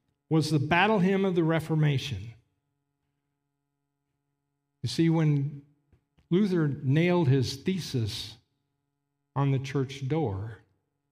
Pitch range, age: 125-150 Hz, 50-69